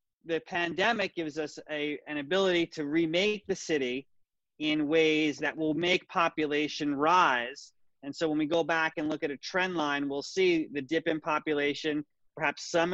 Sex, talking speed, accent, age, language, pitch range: male, 175 wpm, American, 30-49, English, 145-175 Hz